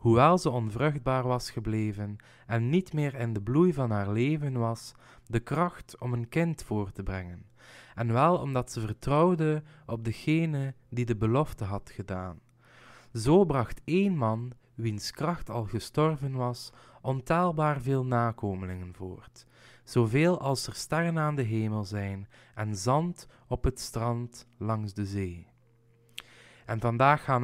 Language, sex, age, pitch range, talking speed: Dutch, male, 20-39, 115-150 Hz, 145 wpm